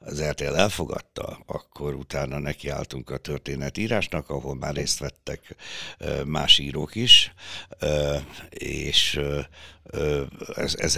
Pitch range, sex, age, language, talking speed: 70-80 Hz, male, 60-79, Hungarian, 95 wpm